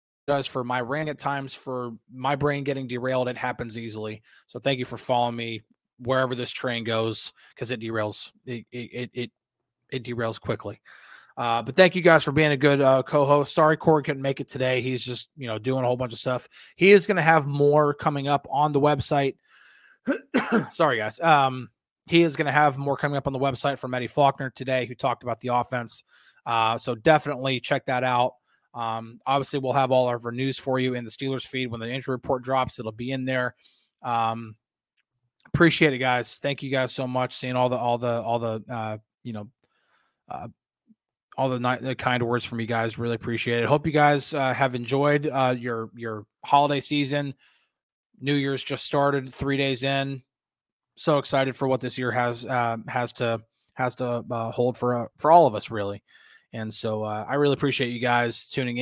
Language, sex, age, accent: English, male, 20-39, American